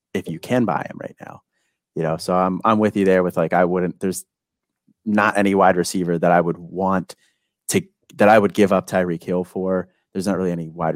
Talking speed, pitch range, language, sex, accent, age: 230 wpm, 85-105 Hz, English, male, American, 30-49